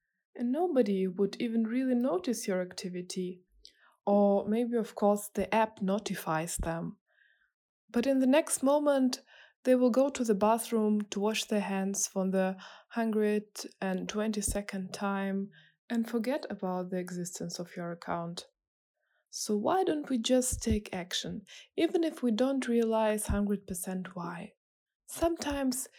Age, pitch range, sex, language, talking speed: 20-39, 190-255 Hz, female, English, 140 wpm